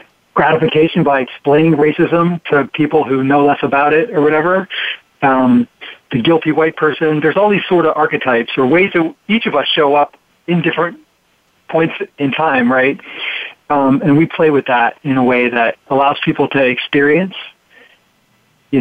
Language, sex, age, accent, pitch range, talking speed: English, male, 40-59, American, 130-155 Hz, 170 wpm